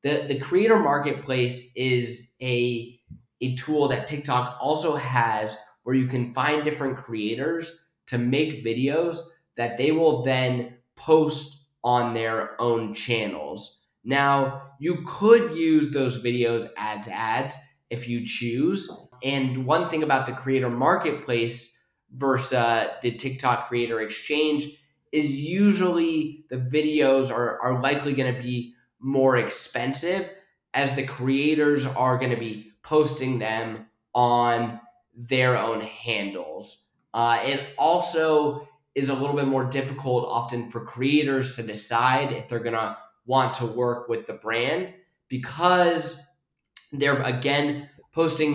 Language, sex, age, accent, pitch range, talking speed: English, male, 20-39, American, 120-150 Hz, 130 wpm